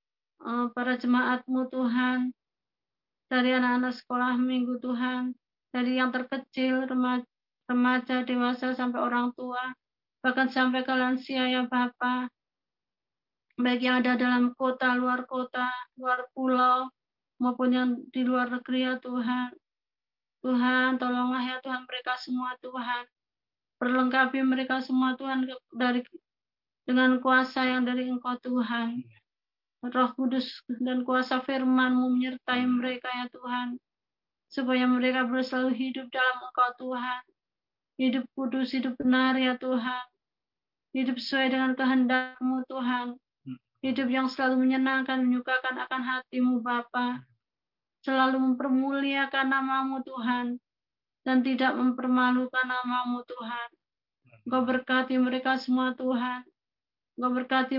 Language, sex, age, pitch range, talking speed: Indonesian, female, 30-49, 250-260 Hz, 110 wpm